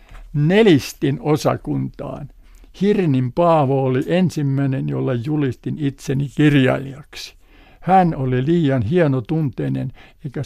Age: 60-79